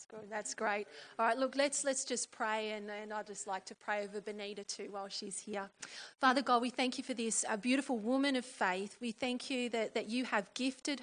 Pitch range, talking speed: 205-245 Hz, 235 wpm